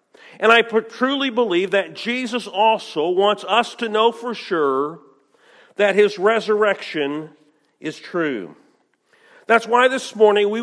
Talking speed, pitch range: 130 wpm, 190-240 Hz